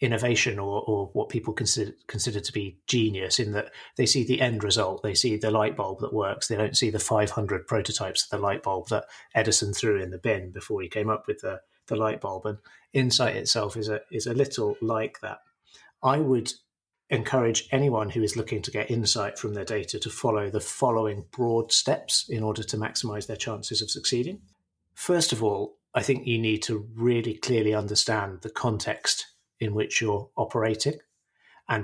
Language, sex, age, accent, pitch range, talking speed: English, male, 30-49, British, 105-120 Hz, 200 wpm